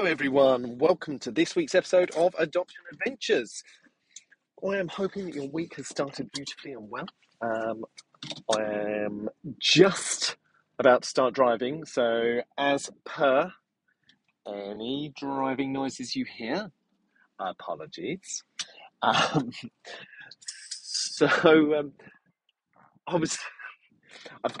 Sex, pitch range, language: male, 110-150 Hz, English